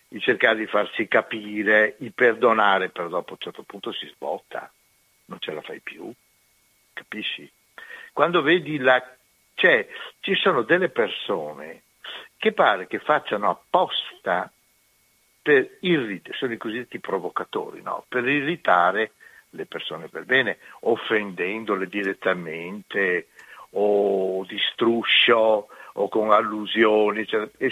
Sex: male